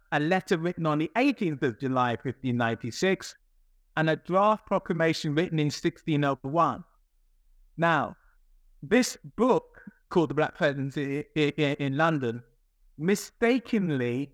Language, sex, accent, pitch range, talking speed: English, male, British, 140-175 Hz, 110 wpm